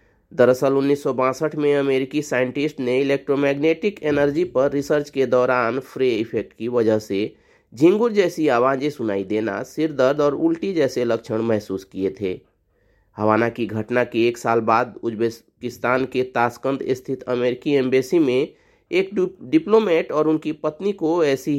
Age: 30-49